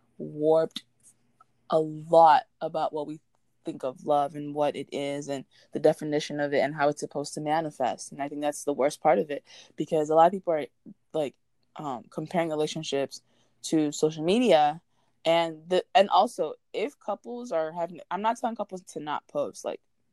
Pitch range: 150-185 Hz